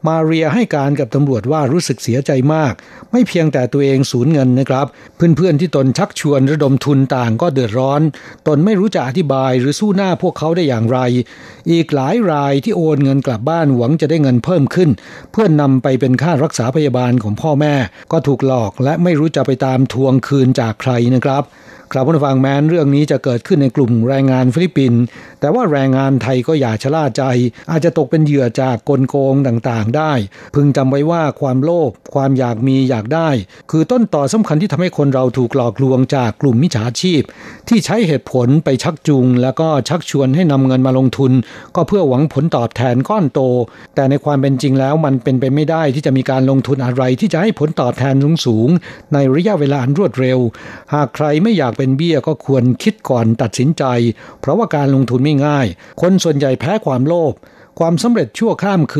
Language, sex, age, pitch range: Thai, male, 60-79, 130-155 Hz